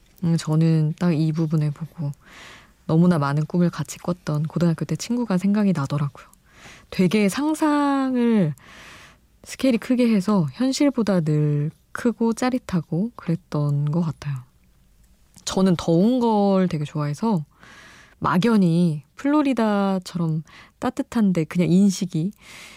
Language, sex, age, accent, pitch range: Korean, female, 20-39, native, 155-210 Hz